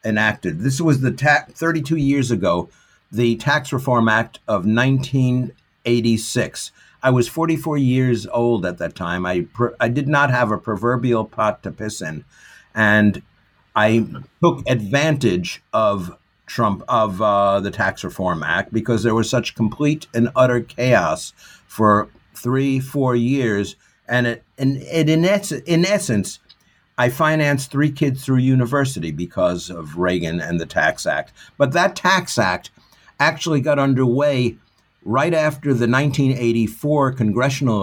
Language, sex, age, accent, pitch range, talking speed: English, male, 50-69, American, 110-140 Hz, 145 wpm